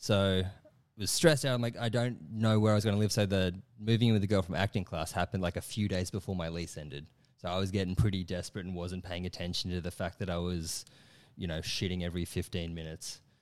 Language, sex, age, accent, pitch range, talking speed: English, male, 20-39, Australian, 95-115 Hz, 255 wpm